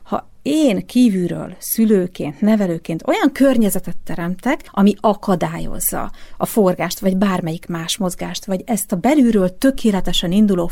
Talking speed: 125 wpm